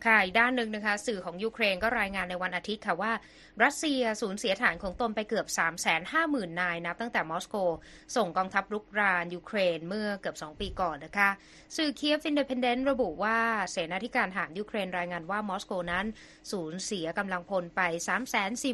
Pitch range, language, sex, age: 180-230 Hz, Thai, female, 20-39